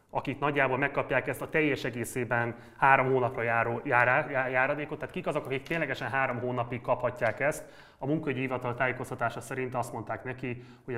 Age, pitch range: 30-49, 110-135 Hz